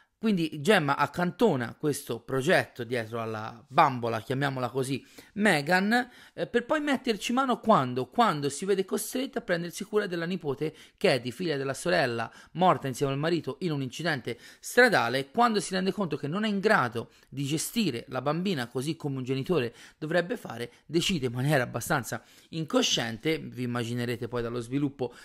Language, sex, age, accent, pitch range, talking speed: Italian, male, 30-49, native, 130-175 Hz, 160 wpm